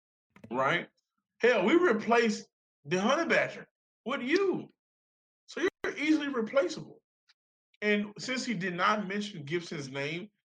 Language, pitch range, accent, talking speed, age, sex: English, 135-175 Hz, American, 120 wpm, 20-39, male